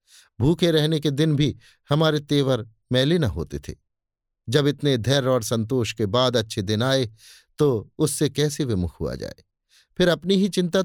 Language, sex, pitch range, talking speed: Hindi, male, 110-150 Hz, 170 wpm